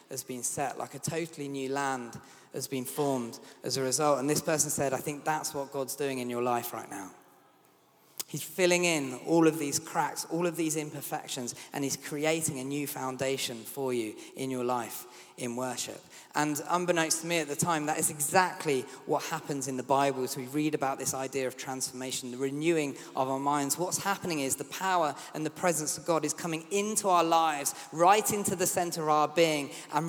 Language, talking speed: English, 210 wpm